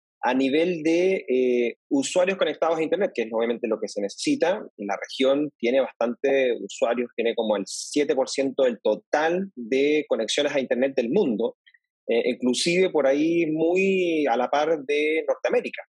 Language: Spanish